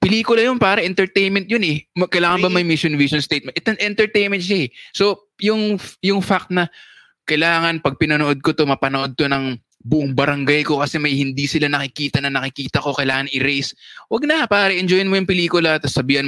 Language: English